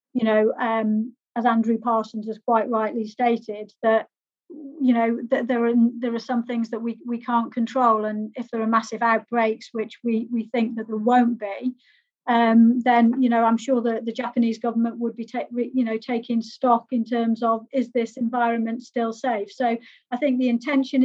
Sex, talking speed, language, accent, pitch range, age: female, 195 wpm, English, British, 230-250 Hz, 40-59